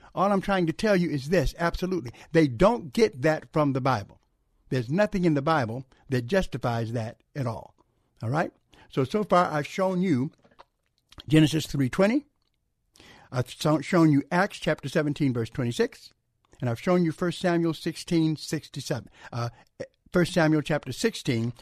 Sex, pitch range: male, 145-180 Hz